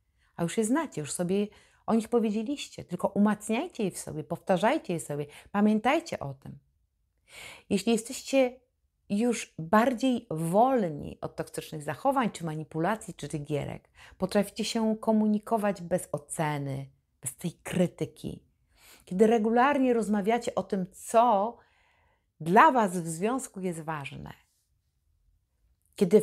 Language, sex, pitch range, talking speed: Polish, female, 145-220 Hz, 120 wpm